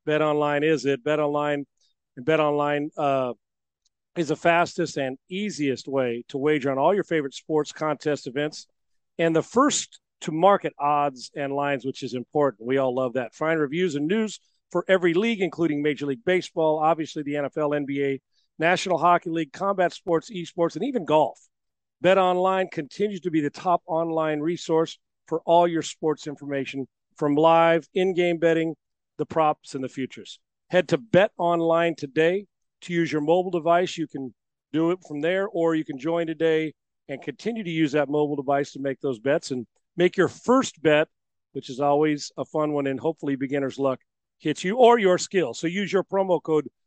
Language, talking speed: English, 185 wpm